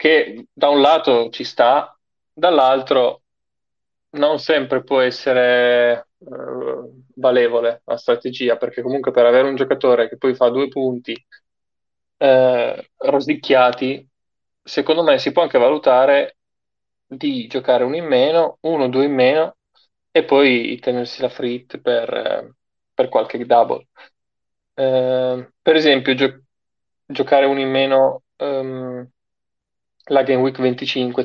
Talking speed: 125 wpm